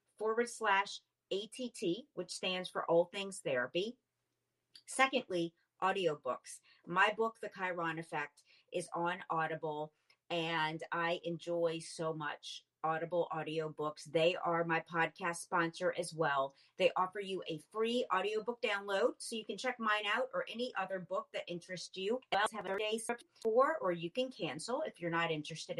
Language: English